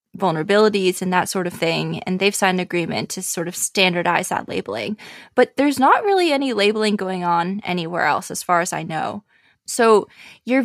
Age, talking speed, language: 20-39, 190 wpm, English